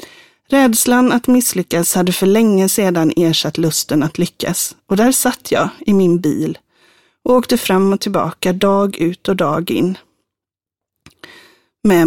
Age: 30-49